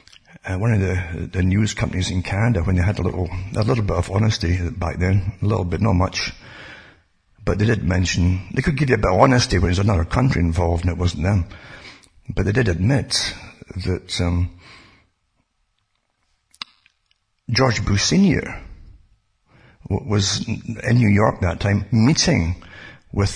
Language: English